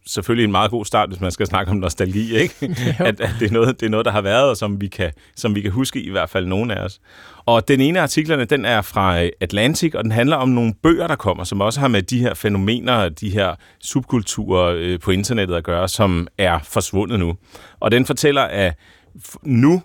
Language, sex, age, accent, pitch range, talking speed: Danish, male, 30-49, native, 95-120 Hz, 235 wpm